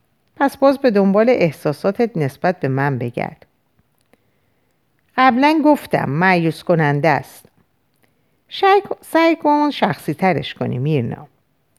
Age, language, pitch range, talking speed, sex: 50-69, Persian, 140-235 Hz, 105 wpm, female